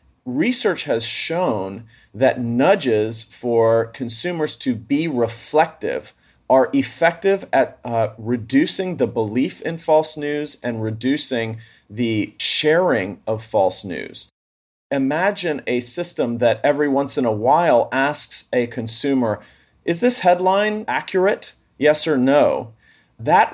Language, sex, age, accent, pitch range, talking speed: English, male, 40-59, American, 120-155 Hz, 120 wpm